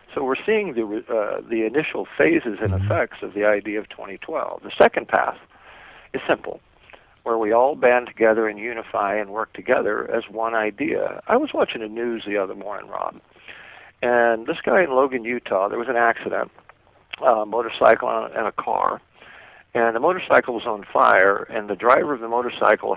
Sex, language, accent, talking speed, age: male, English, American, 180 wpm, 50-69